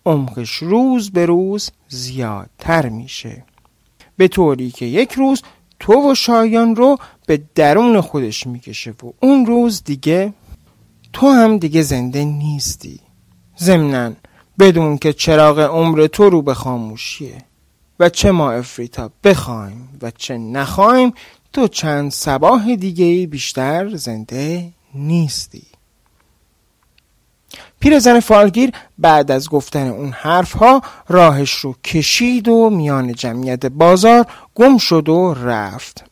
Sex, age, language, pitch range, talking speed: male, 40-59, Persian, 130-200 Hz, 120 wpm